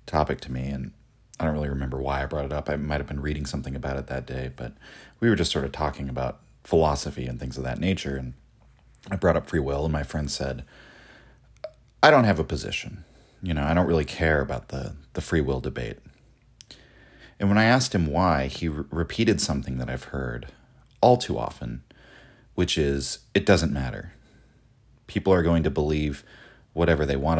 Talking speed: 200 wpm